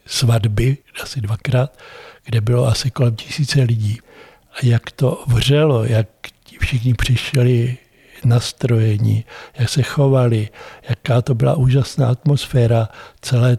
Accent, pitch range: native, 120-135 Hz